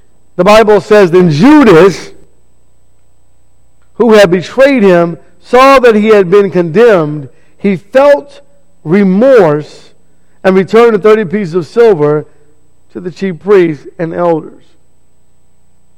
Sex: male